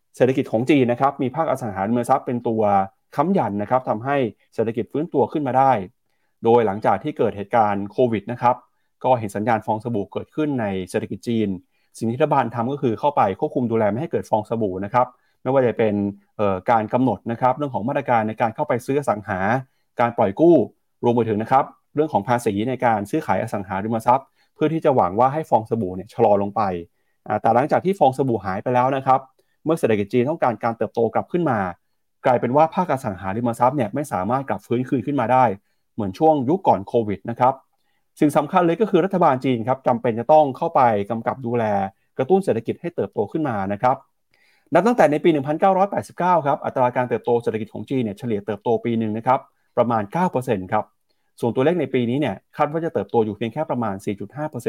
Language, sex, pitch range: Thai, male, 110-145 Hz